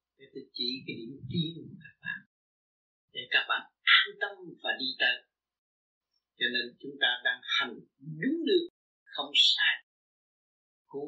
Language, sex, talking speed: Vietnamese, male, 155 wpm